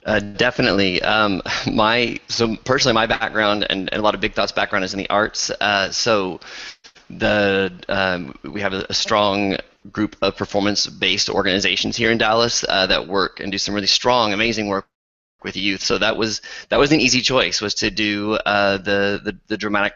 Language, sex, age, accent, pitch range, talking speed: English, male, 20-39, American, 105-120 Hz, 195 wpm